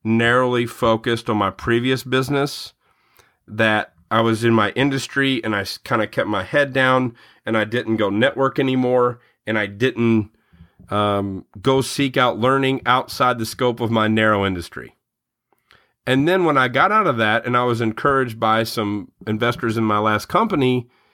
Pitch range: 110-130 Hz